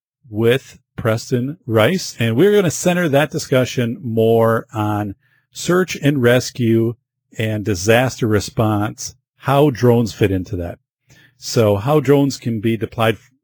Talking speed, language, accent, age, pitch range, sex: 130 wpm, English, American, 50-69, 105-130 Hz, male